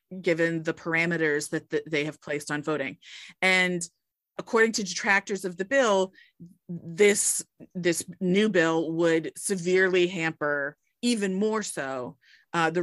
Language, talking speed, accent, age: English, 130 wpm, American, 30-49